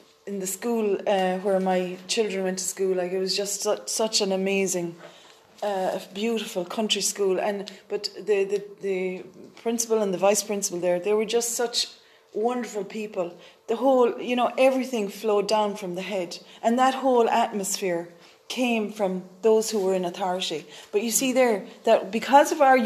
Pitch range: 200-265 Hz